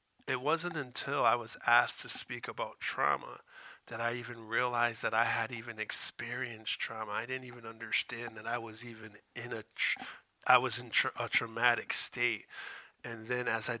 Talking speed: 185 wpm